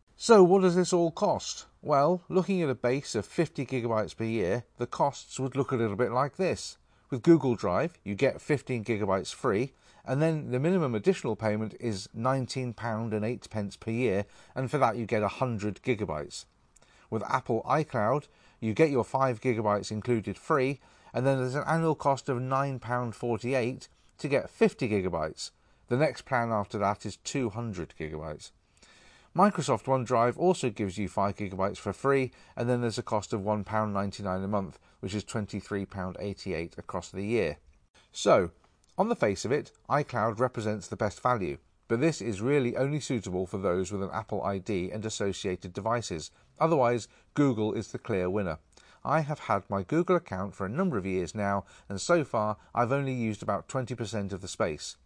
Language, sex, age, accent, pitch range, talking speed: English, male, 40-59, British, 100-135 Hz, 175 wpm